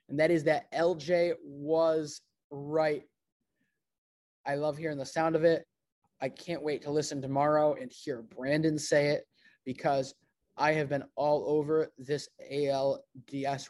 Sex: male